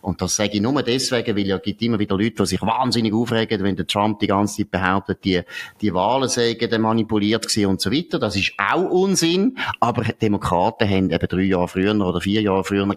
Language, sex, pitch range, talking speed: German, male, 100-120 Hz, 215 wpm